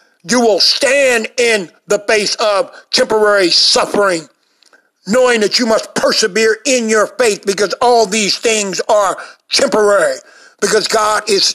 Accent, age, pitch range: American, 50-69, 190-230 Hz